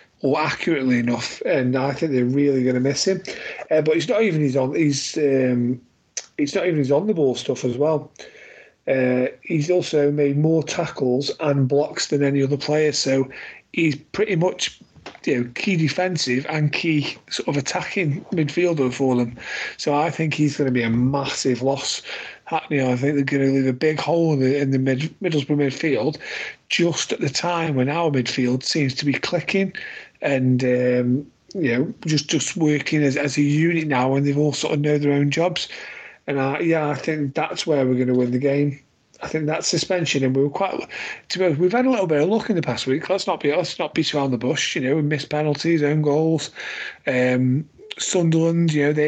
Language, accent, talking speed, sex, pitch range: English, British, 210 wpm, male, 135-160 Hz